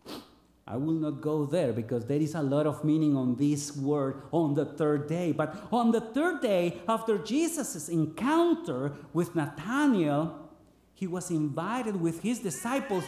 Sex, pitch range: male, 145-240 Hz